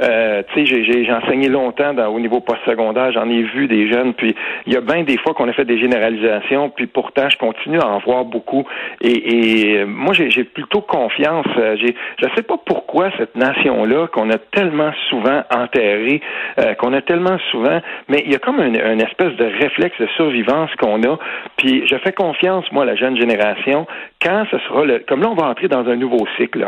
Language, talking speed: French, 215 wpm